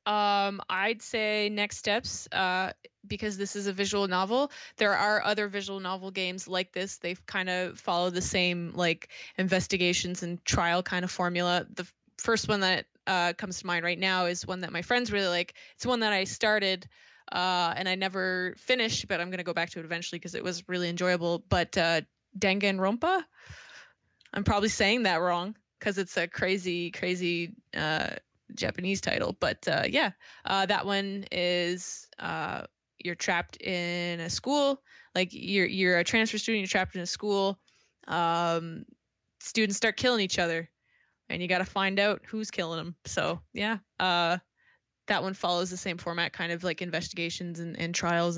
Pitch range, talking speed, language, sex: 175-200 Hz, 180 wpm, English, female